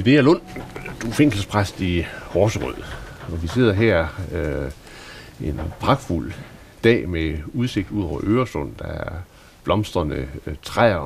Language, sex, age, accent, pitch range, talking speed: Danish, male, 60-79, native, 90-120 Hz, 120 wpm